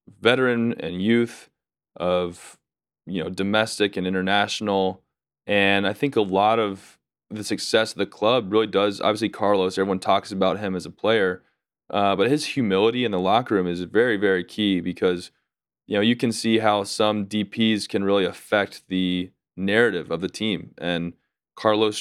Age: 20-39